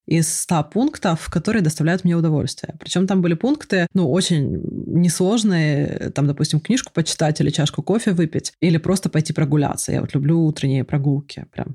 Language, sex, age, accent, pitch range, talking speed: Russian, female, 20-39, native, 155-190 Hz, 165 wpm